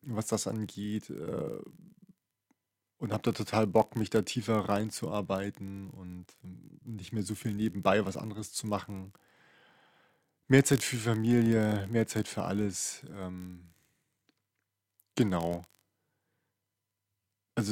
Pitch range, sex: 100-120 Hz, male